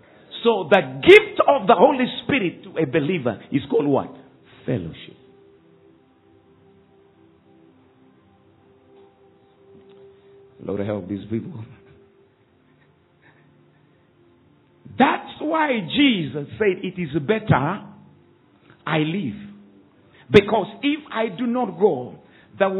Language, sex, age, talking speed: English, male, 50-69, 90 wpm